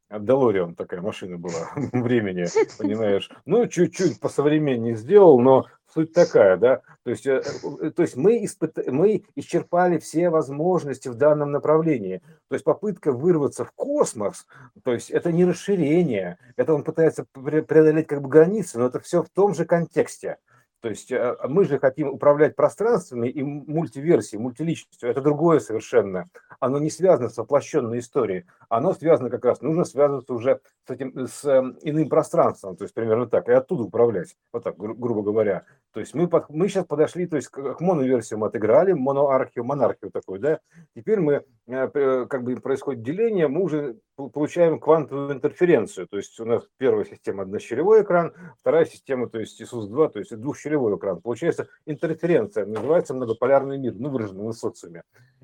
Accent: native